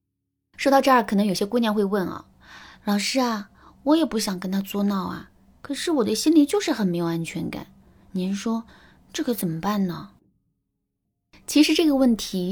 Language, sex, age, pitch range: Chinese, female, 20-39, 170-250 Hz